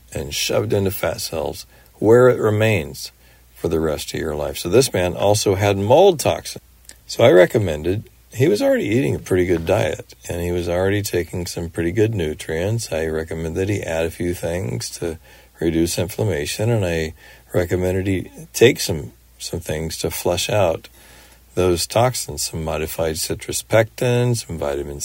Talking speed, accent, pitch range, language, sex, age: 170 wpm, American, 80-100 Hz, English, male, 50-69